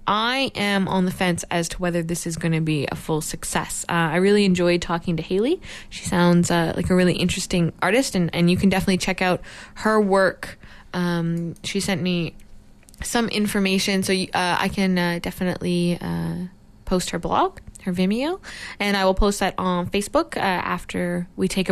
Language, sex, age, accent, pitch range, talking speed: English, female, 20-39, American, 175-205 Hz, 195 wpm